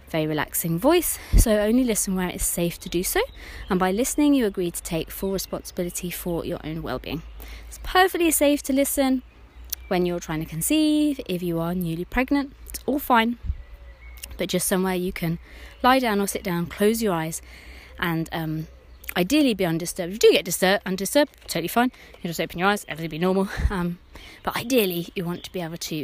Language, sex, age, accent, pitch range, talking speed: English, female, 20-39, British, 170-265 Hz, 200 wpm